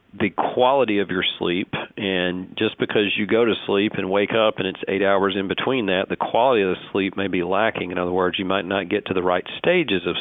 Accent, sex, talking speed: American, male, 245 wpm